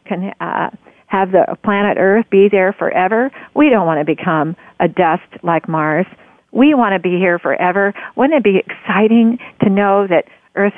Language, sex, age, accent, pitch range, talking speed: English, female, 50-69, American, 180-215 Hz, 180 wpm